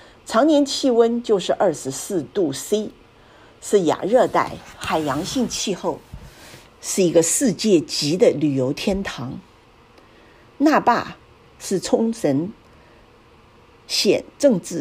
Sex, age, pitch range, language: female, 50-69, 165-235 Hz, Chinese